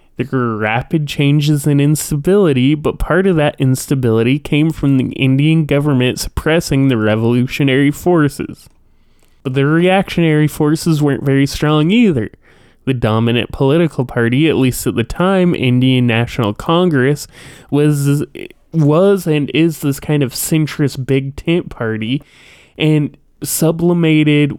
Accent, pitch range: American, 130-155 Hz